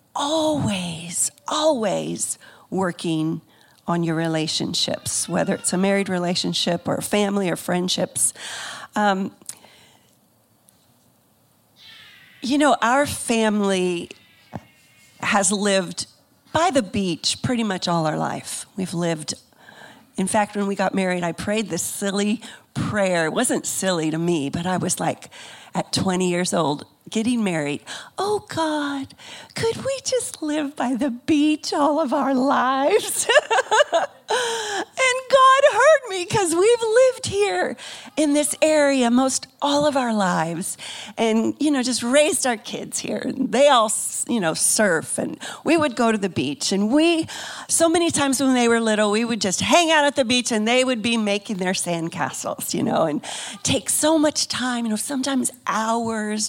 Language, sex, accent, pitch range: English, female, American, 195-285 Hz